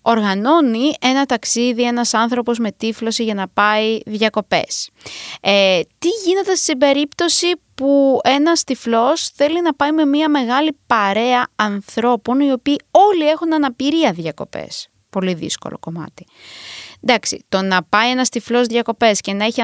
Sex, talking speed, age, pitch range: female, 140 wpm, 20-39, 200-290 Hz